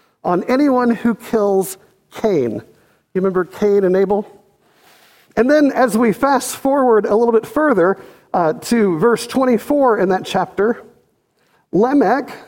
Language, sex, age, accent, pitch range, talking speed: English, male, 50-69, American, 195-255 Hz, 135 wpm